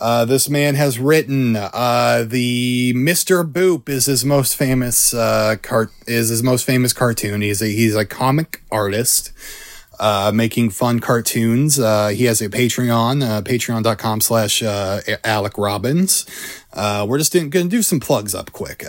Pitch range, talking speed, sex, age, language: 105-130 Hz, 165 wpm, male, 30-49, English